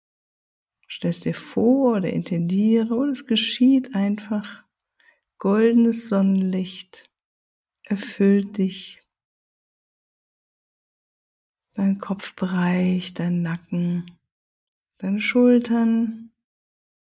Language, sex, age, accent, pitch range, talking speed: German, female, 60-79, German, 185-225 Hz, 70 wpm